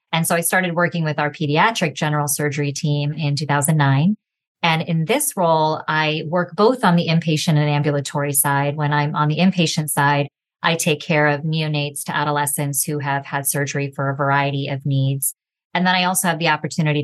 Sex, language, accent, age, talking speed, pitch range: female, English, American, 30-49, 195 wpm, 145-165 Hz